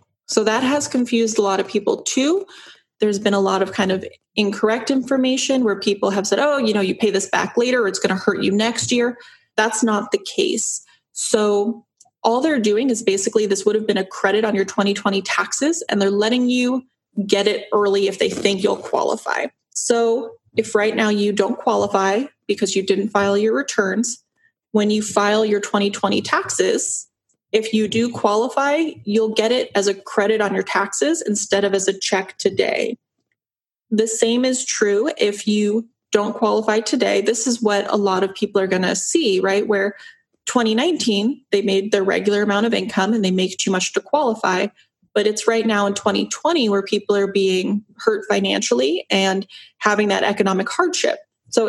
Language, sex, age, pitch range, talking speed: English, female, 20-39, 200-240 Hz, 190 wpm